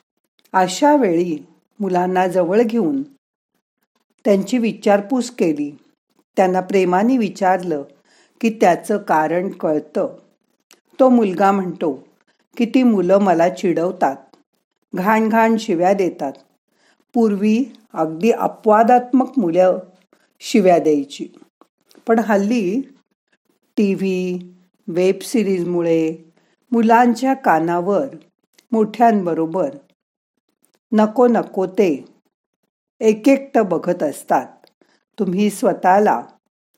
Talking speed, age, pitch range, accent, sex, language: 80 wpm, 50-69, 180-235 Hz, native, female, Marathi